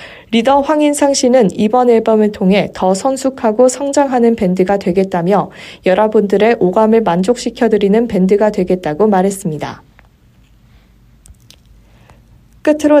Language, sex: Korean, female